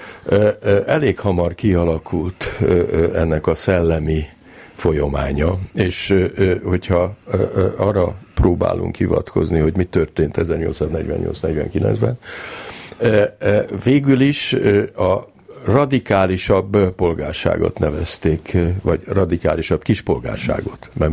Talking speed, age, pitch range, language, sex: 75 wpm, 60-79, 85-110 Hz, Hungarian, male